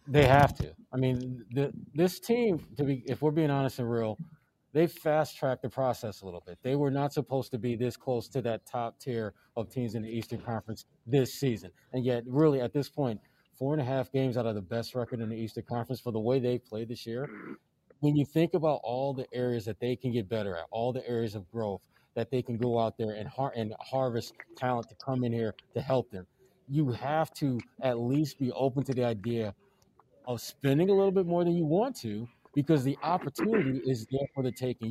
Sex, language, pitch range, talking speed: male, English, 115-140 Hz, 230 wpm